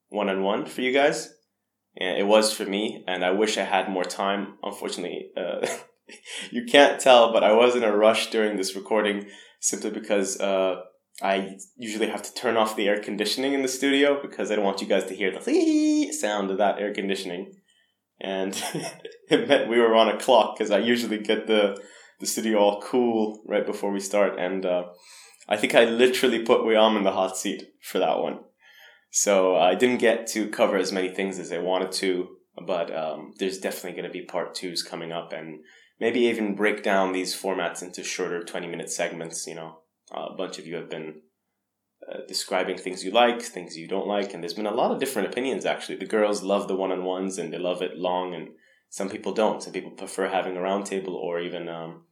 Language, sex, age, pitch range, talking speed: English, male, 20-39, 95-115 Hz, 205 wpm